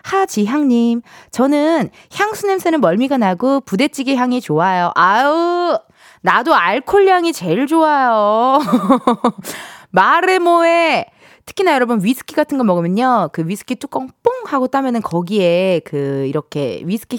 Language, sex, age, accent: Korean, female, 20-39, native